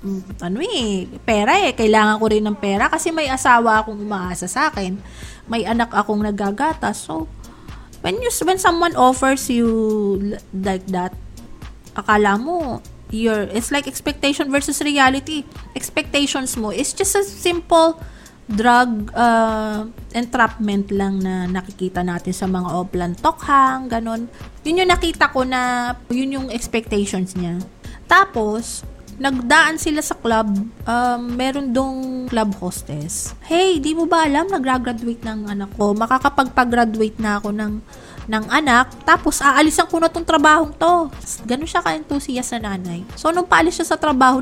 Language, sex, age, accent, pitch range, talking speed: Filipino, female, 20-39, native, 215-300 Hz, 145 wpm